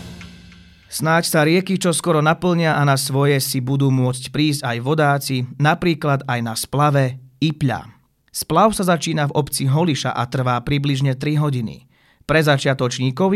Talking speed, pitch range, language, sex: 150 wpm, 130-155 Hz, Slovak, male